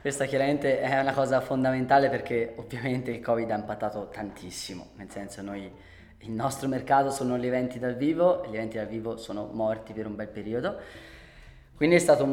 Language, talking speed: Italian, 190 wpm